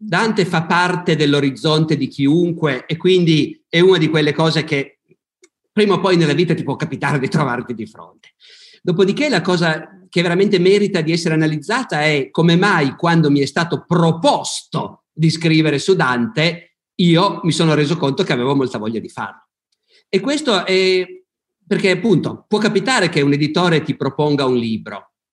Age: 50-69